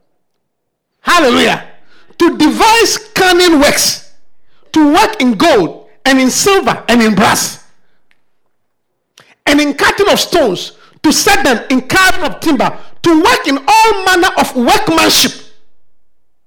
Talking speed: 125 wpm